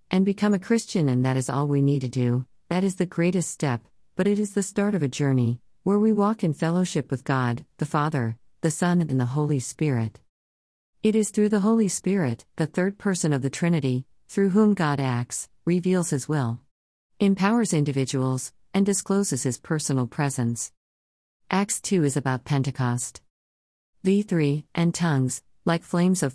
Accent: American